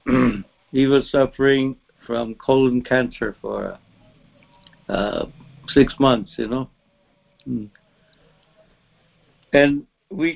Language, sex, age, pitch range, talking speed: English, male, 60-79, 120-150 Hz, 80 wpm